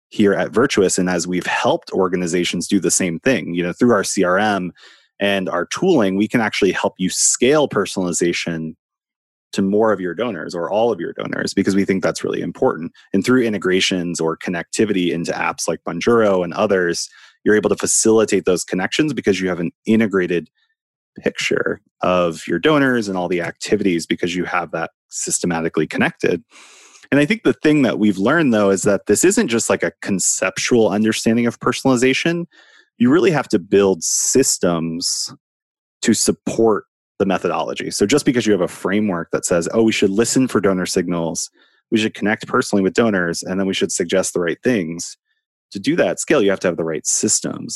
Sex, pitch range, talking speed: male, 90-120 Hz, 190 wpm